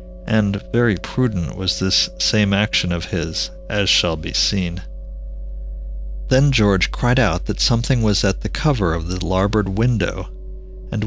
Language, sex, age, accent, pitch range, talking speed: English, male, 50-69, American, 85-110 Hz, 150 wpm